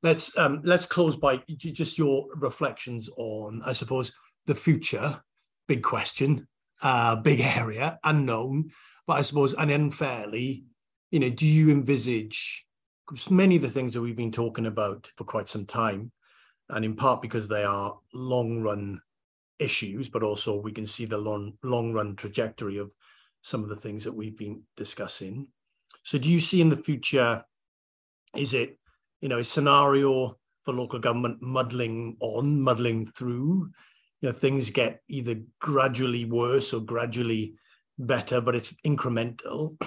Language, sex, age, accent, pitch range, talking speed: English, male, 40-59, British, 115-140 Hz, 155 wpm